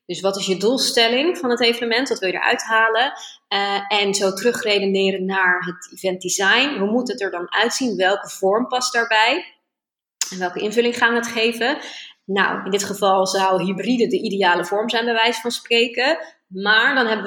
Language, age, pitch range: Dutch, 20-39, 190-235 Hz